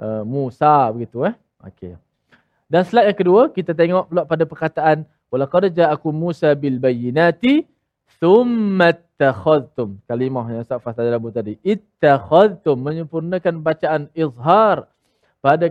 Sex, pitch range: male, 145-205 Hz